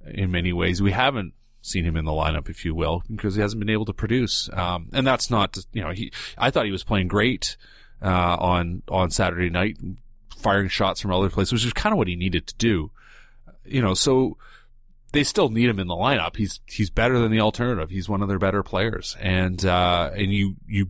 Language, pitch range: English, 90-115 Hz